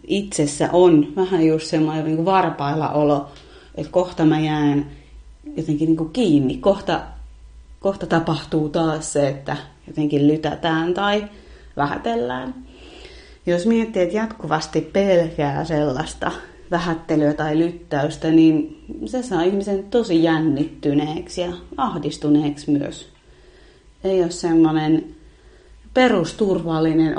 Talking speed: 105 wpm